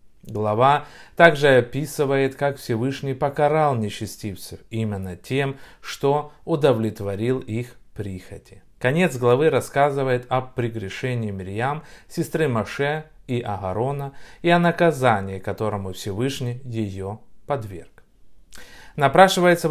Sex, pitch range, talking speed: male, 110-145 Hz, 95 wpm